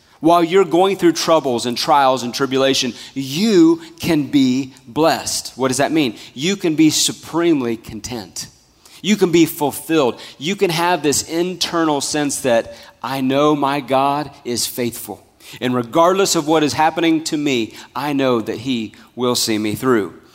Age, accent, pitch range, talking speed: 30-49, American, 120-160 Hz, 160 wpm